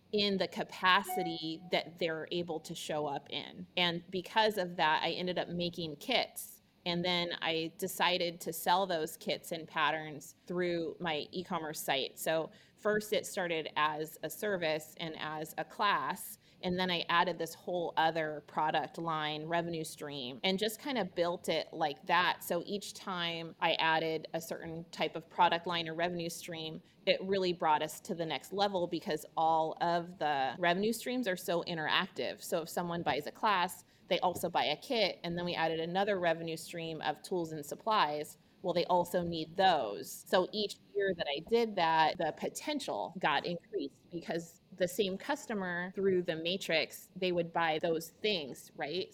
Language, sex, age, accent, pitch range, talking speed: English, female, 30-49, American, 160-185 Hz, 180 wpm